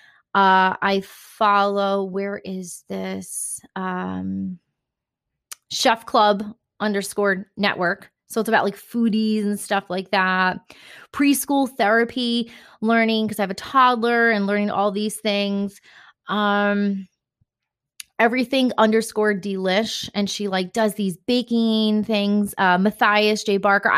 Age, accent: 20-39, American